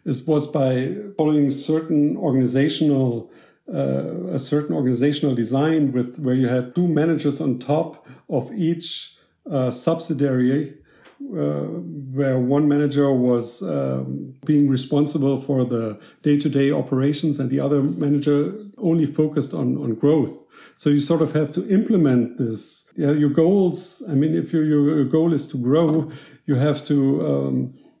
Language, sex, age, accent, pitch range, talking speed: English, male, 50-69, German, 130-155 Hz, 145 wpm